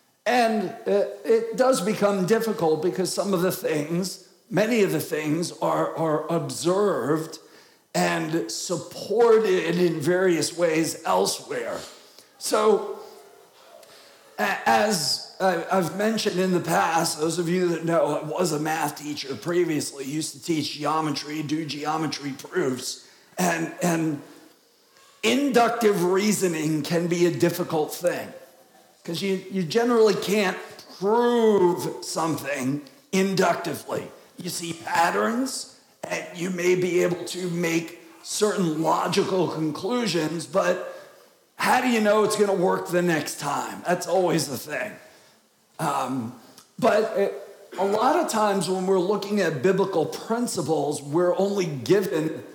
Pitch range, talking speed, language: 160-205 Hz, 125 wpm, English